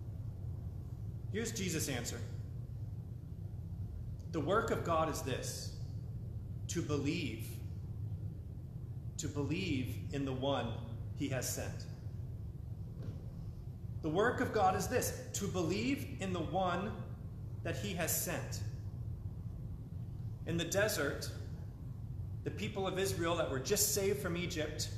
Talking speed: 115 wpm